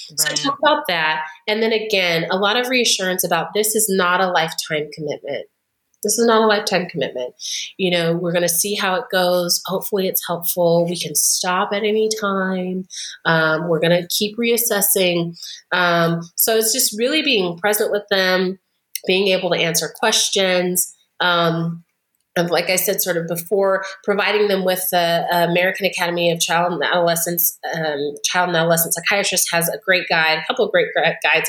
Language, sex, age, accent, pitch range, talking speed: English, female, 30-49, American, 170-205 Hz, 175 wpm